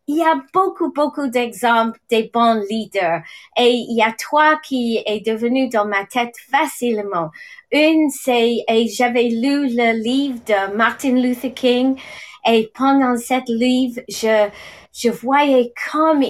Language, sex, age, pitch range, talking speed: English, female, 30-49, 230-290 Hz, 145 wpm